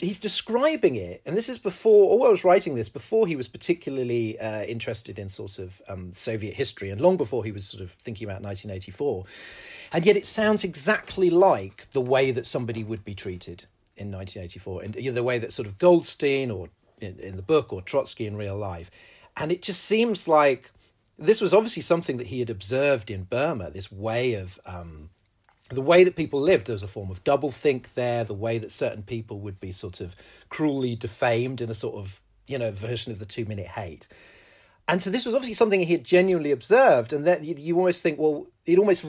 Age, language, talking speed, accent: 40-59, English, 210 wpm, British